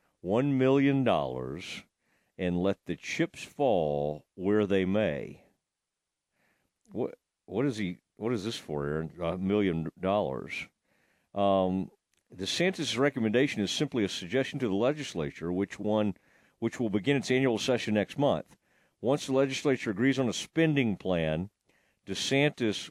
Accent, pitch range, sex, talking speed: American, 95-130 Hz, male, 135 wpm